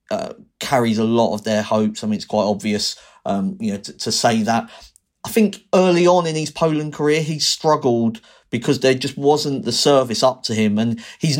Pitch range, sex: 110-135 Hz, male